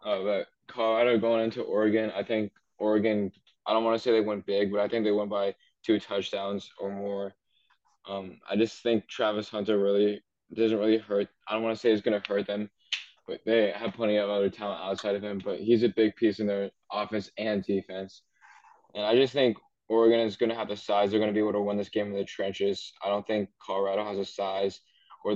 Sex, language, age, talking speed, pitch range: male, English, 10-29, 230 wpm, 100-110 Hz